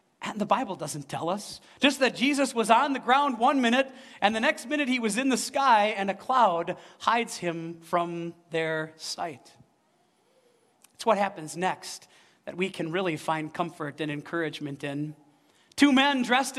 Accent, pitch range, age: American, 185-265 Hz, 40-59